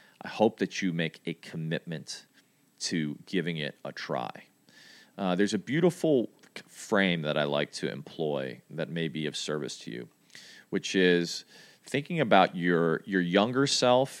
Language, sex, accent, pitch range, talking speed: English, male, American, 80-100 Hz, 155 wpm